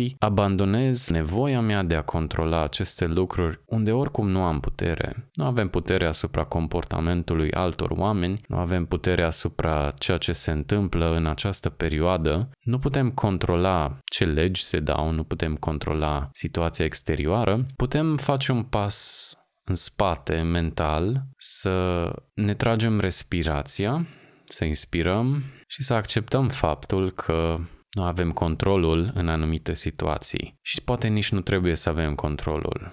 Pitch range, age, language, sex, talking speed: 80-110 Hz, 20-39, Romanian, male, 135 wpm